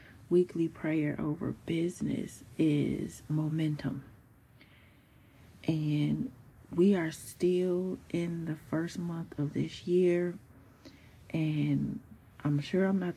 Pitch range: 135-165 Hz